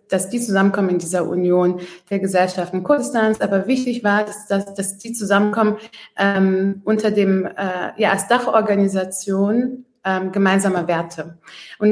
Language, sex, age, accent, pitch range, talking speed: German, female, 20-39, German, 185-215 Hz, 140 wpm